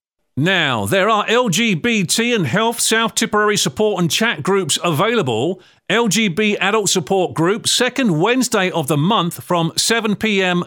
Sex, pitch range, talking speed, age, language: male, 150-210 Hz, 135 wpm, 40-59, English